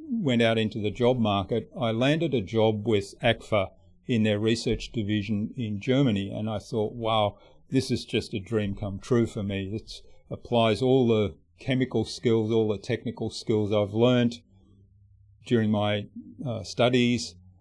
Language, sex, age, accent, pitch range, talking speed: English, male, 50-69, Australian, 105-120 Hz, 160 wpm